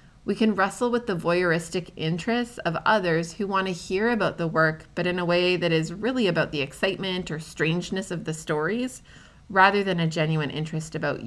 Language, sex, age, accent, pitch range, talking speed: English, female, 30-49, American, 160-200 Hz, 195 wpm